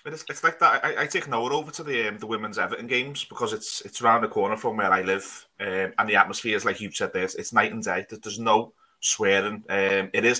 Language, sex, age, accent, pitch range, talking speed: English, male, 20-39, British, 110-130 Hz, 265 wpm